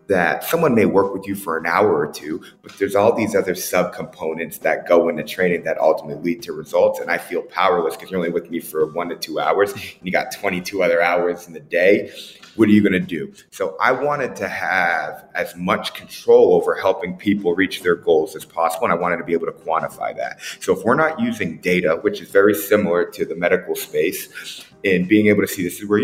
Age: 30-49